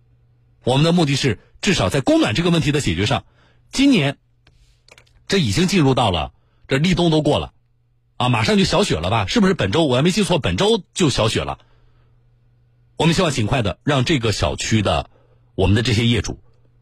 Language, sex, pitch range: Chinese, male, 105-140 Hz